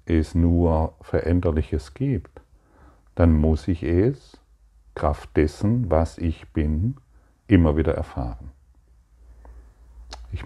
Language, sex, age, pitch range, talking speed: German, male, 40-59, 70-90 Hz, 100 wpm